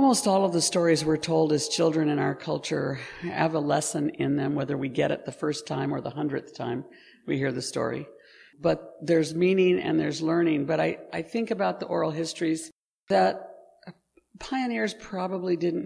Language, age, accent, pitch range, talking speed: English, 60-79, American, 160-200 Hz, 190 wpm